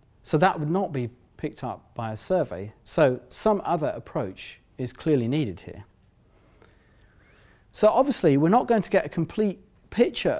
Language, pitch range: English, 115-160 Hz